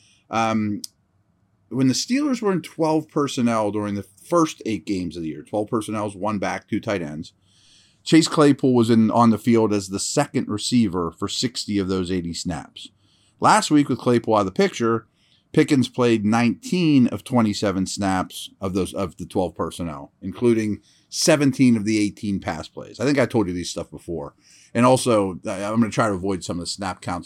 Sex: male